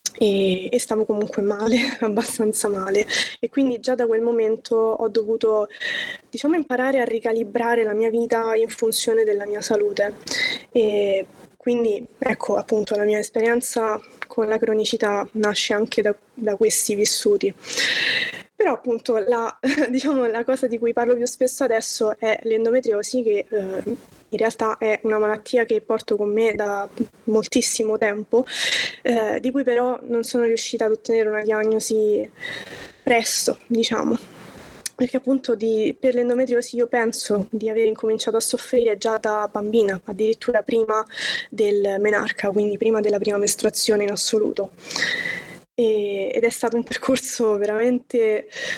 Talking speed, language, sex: 140 wpm, Italian, female